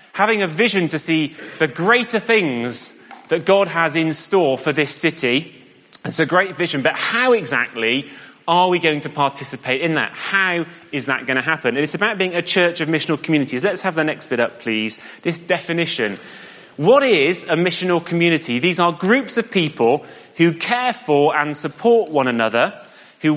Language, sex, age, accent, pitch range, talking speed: English, male, 30-49, British, 140-185 Hz, 180 wpm